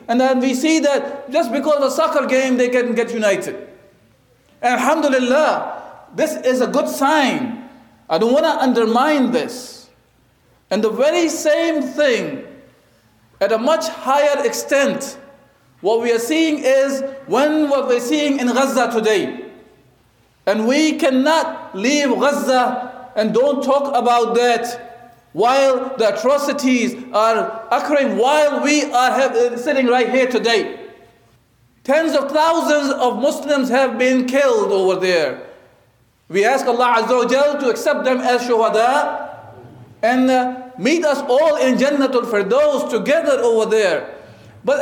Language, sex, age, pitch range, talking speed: English, male, 50-69, 245-290 Hz, 140 wpm